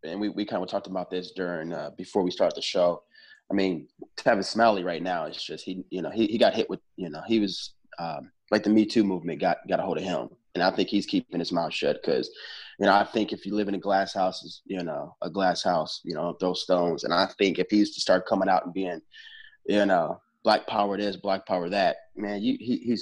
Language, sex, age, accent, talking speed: English, male, 20-39, American, 255 wpm